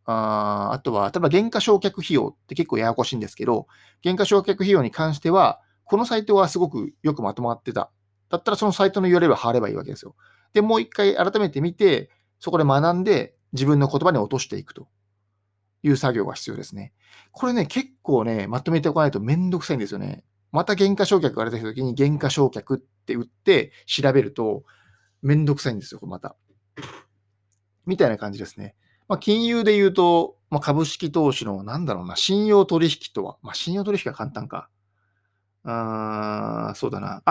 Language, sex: Japanese, male